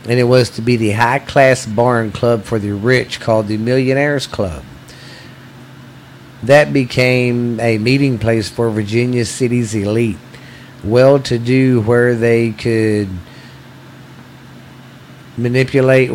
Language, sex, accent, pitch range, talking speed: English, male, American, 115-130 Hz, 125 wpm